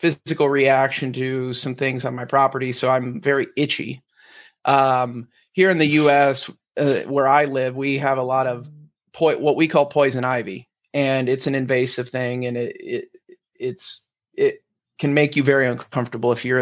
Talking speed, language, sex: 175 wpm, English, male